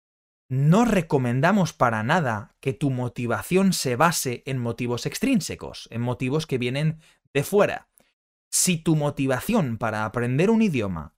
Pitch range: 110-160 Hz